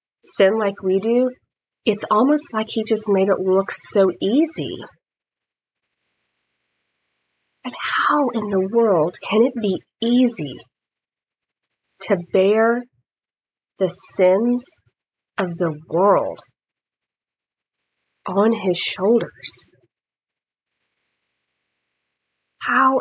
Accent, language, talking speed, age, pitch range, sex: American, English, 90 wpm, 30-49, 170-215 Hz, female